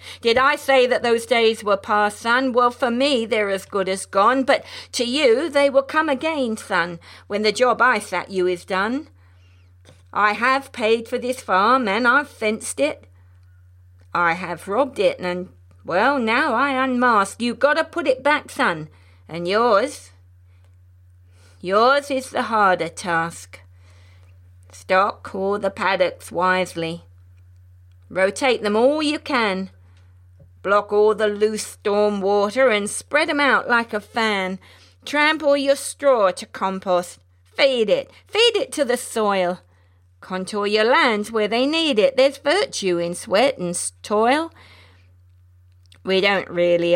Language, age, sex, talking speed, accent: English, 50-69, female, 150 wpm, British